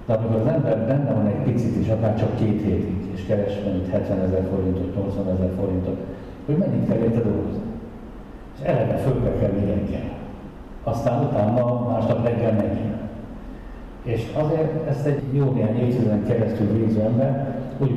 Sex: male